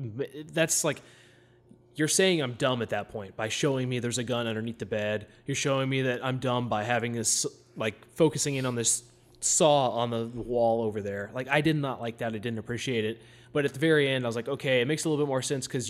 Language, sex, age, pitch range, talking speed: English, male, 20-39, 115-140 Hz, 245 wpm